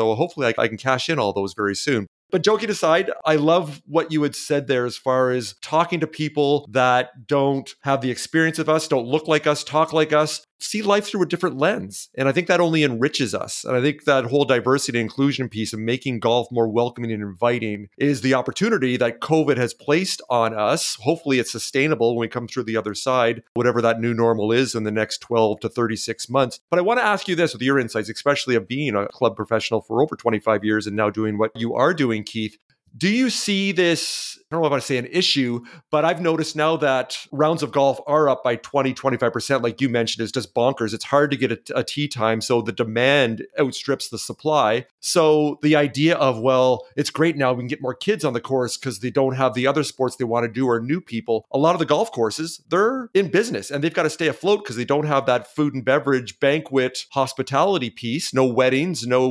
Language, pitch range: English, 120-155 Hz